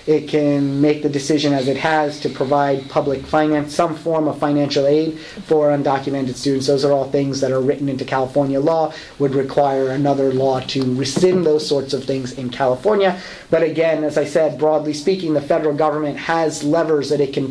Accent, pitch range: American, 135-155 Hz